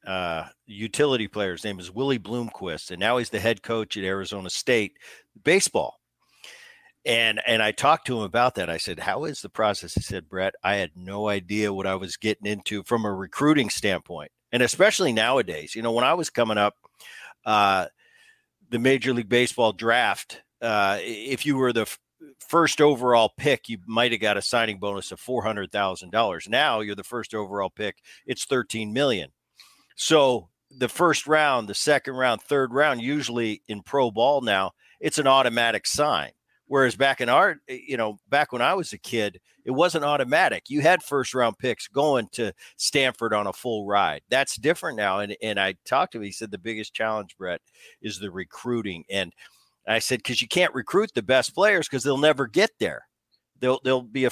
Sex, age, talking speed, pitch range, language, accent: male, 50-69, 190 wpm, 105-135 Hz, English, American